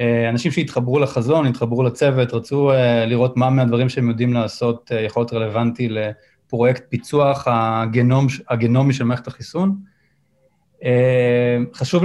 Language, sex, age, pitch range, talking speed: Hebrew, male, 20-39, 120-150 Hz, 115 wpm